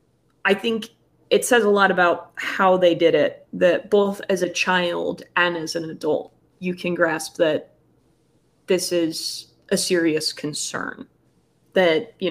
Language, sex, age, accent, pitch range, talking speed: English, female, 20-39, American, 165-205 Hz, 150 wpm